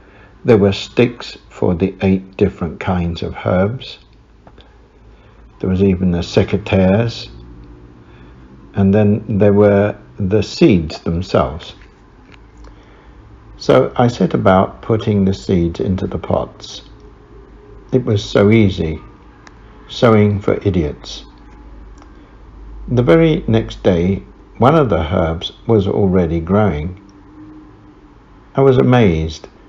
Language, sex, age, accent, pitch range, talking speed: English, male, 60-79, British, 85-105 Hz, 105 wpm